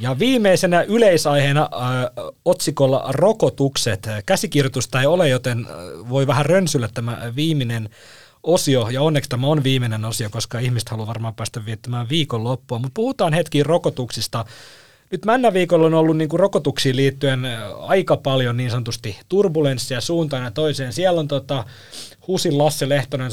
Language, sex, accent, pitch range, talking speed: Finnish, male, native, 115-145 Hz, 140 wpm